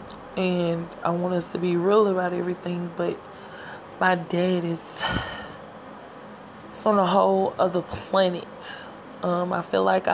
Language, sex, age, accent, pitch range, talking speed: English, female, 20-39, American, 175-195 Hz, 135 wpm